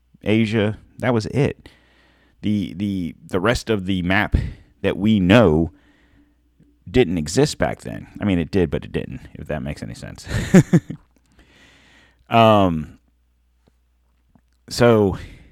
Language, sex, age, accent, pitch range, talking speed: English, male, 40-59, American, 80-100 Hz, 125 wpm